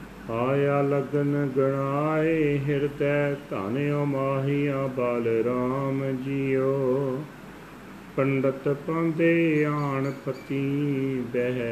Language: Punjabi